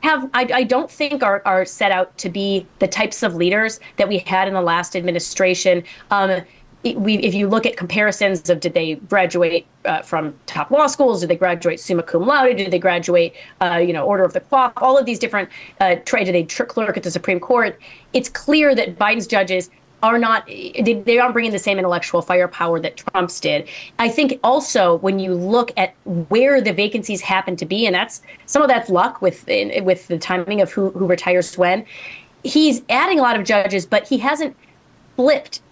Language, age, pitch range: English, 30-49, 180-240 Hz